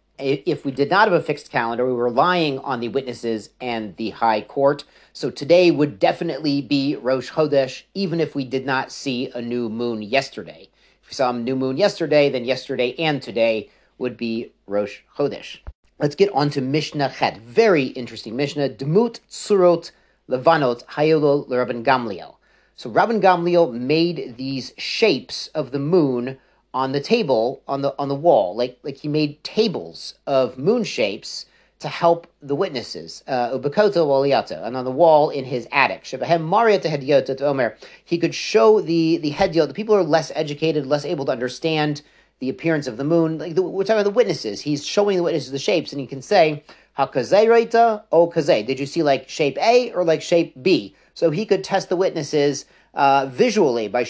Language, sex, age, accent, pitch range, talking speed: English, male, 40-59, American, 130-170 Hz, 175 wpm